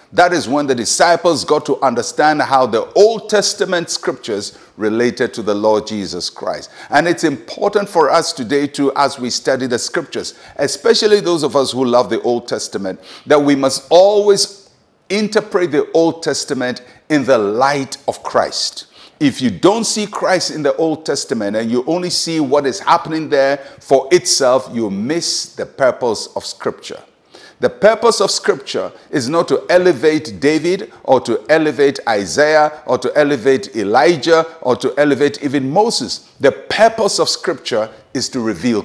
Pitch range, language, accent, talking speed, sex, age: 135-195 Hz, English, Nigerian, 165 wpm, male, 50-69